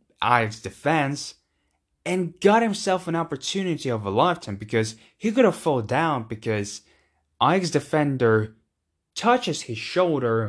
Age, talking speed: 10-29, 125 wpm